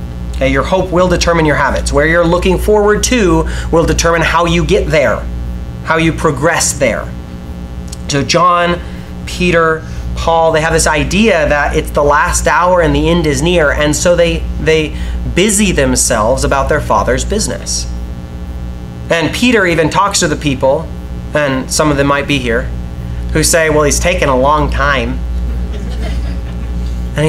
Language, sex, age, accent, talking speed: English, male, 30-49, American, 160 wpm